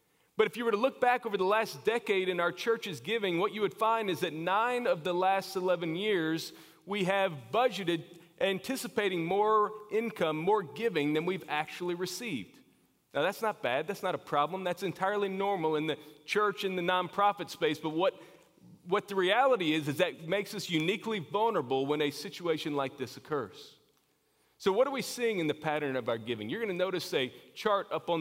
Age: 40-59